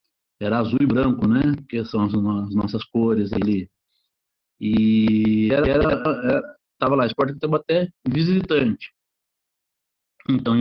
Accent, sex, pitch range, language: Brazilian, male, 110-145 Hz, Portuguese